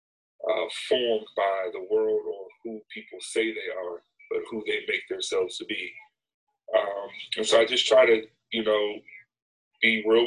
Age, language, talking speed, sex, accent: 30-49, English, 170 wpm, male, American